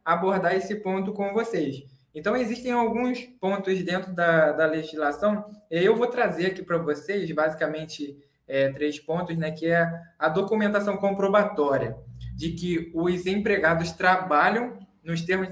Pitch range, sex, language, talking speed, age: 160-205 Hz, male, Portuguese, 135 wpm, 20-39